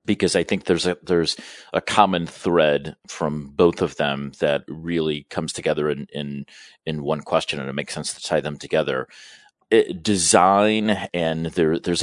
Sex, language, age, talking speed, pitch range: male, English, 40-59, 175 wpm, 75-95 Hz